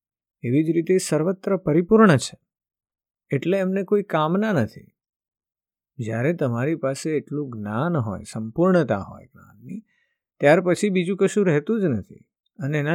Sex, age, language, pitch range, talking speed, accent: male, 50-69, Gujarati, 120-170 Hz, 85 wpm, native